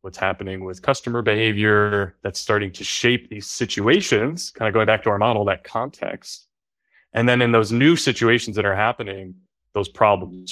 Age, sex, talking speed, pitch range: 20-39, male, 175 wpm, 95-120 Hz